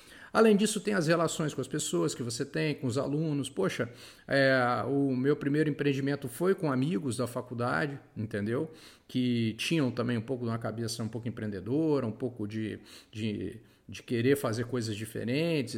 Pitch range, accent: 120-155 Hz, Brazilian